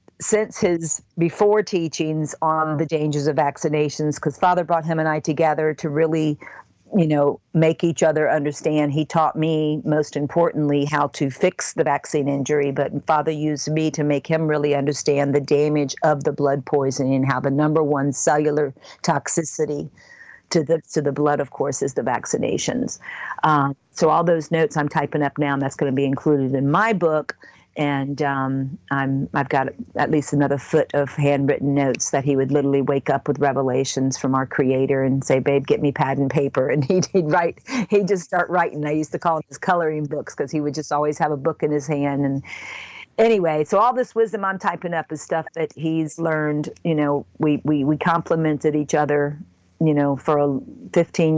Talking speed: 200 wpm